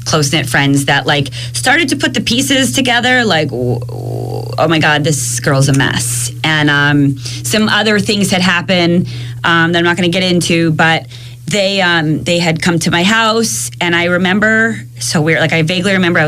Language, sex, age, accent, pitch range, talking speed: English, female, 20-39, American, 130-175 Hz, 195 wpm